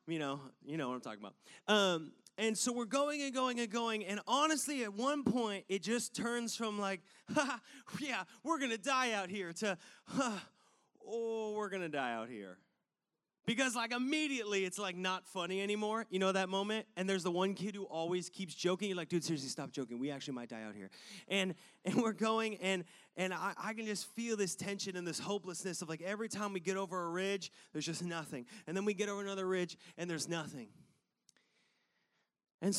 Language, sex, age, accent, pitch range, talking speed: English, male, 30-49, American, 180-235 Hz, 215 wpm